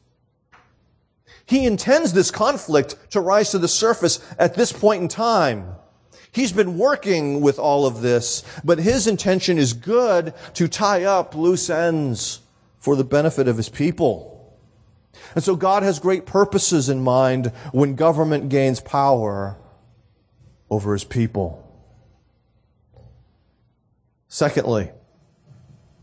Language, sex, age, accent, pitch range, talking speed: English, male, 40-59, American, 115-165 Hz, 120 wpm